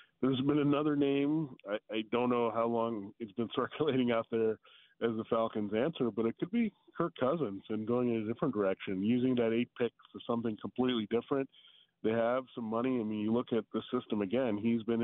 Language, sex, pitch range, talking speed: English, male, 110-130 Hz, 210 wpm